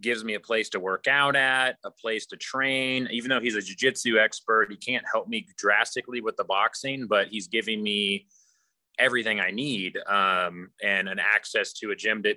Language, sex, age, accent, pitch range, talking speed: English, male, 30-49, American, 100-125 Hz, 200 wpm